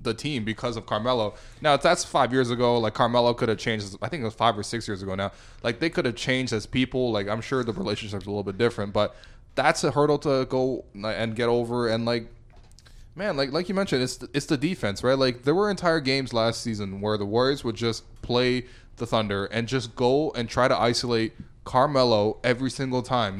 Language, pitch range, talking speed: English, 110-135 Hz, 230 wpm